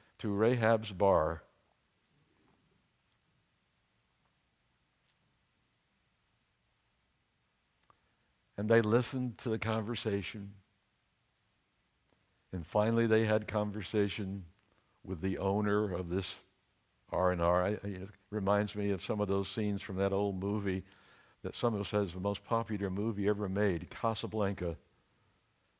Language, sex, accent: English, male, American